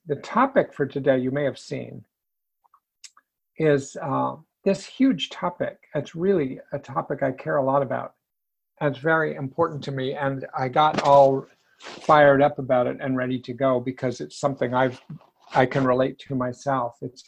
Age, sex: 50-69, male